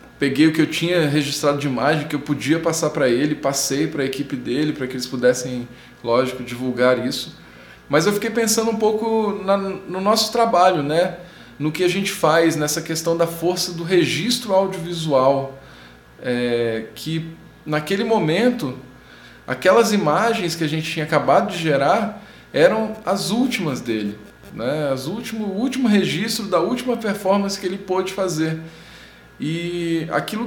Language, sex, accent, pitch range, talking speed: Portuguese, male, Brazilian, 145-200 Hz, 160 wpm